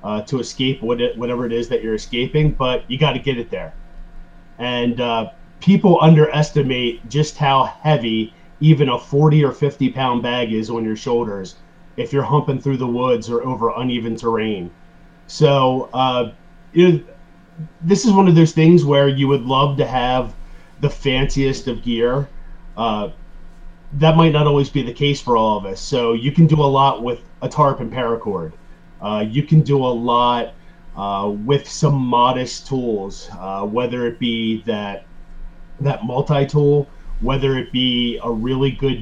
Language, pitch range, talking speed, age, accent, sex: English, 115-140 Hz, 165 wpm, 30-49, American, male